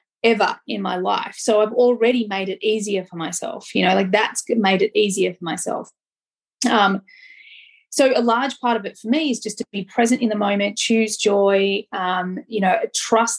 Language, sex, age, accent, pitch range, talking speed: English, female, 20-39, Australian, 210-245 Hz, 195 wpm